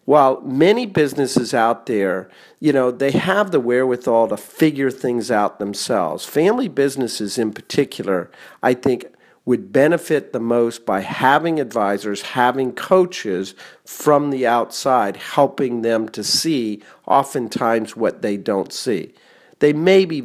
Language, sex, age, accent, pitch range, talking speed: English, male, 50-69, American, 110-145 Hz, 135 wpm